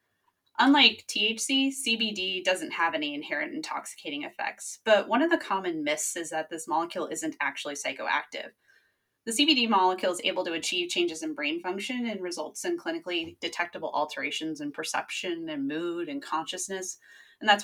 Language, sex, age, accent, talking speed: English, female, 20-39, American, 160 wpm